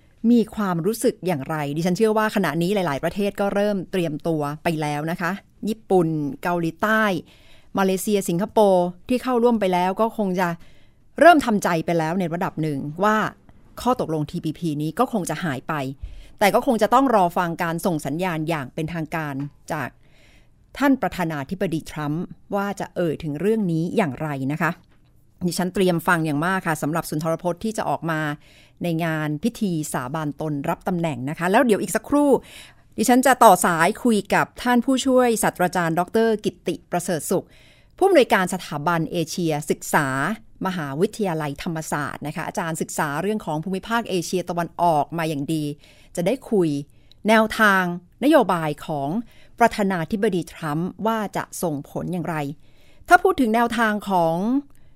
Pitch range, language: 160-215 Hz, Thai